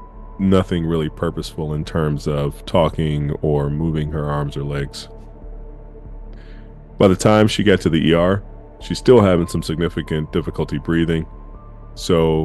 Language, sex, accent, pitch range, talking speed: English, male, American, 80-100 Hz, 140 wpm